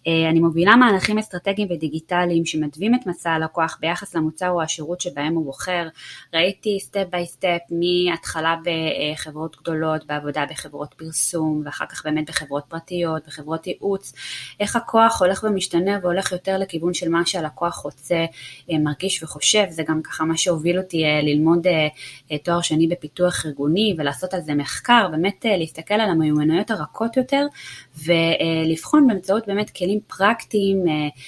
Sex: female